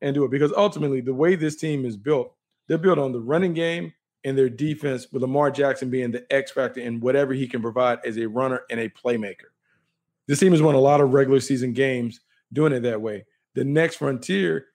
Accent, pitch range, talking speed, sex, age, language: American, 125-150 Hz, 220 wpm, male, 40-59, English